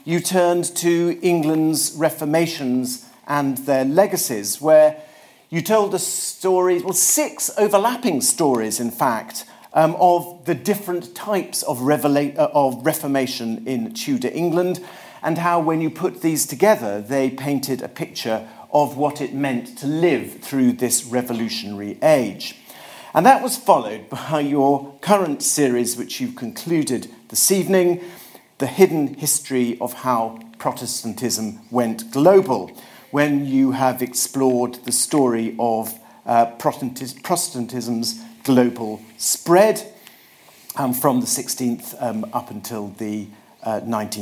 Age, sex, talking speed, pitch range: 50-69, male, 125 wpm, 125-180 Hz